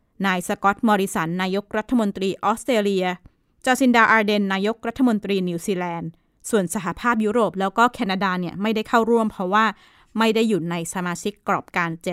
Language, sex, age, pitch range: Thai, female, 20-39, 195-240 Hz